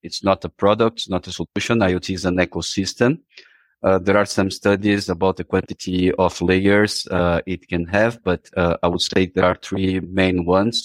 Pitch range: 90-105 Hz